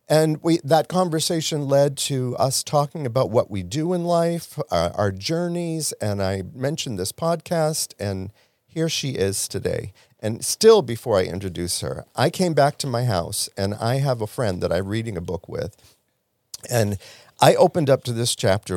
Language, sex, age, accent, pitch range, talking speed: English, male, 50-69, American, 105-160 Hz, 180 wpm